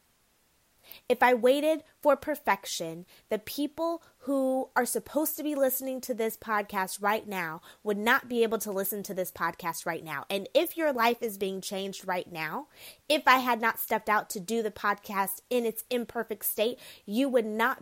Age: 20-39